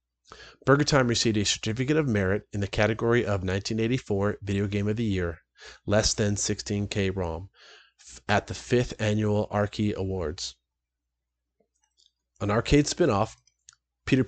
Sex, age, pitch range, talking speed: male, 30-49, 100-115 Hz, 130 wpm